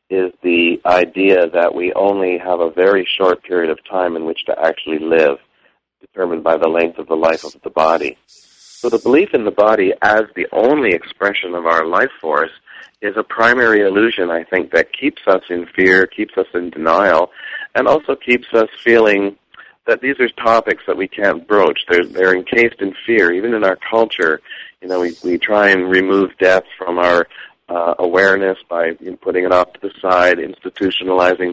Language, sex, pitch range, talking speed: English, male, 85-100 Hz, 190 wpm